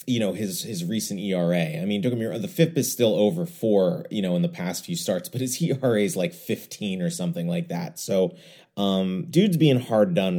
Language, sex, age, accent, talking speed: English, male, 30-49, American, 215 wpm